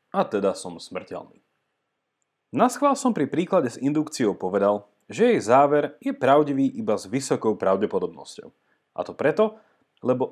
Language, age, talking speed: Slovak, 30-49, 140 wpm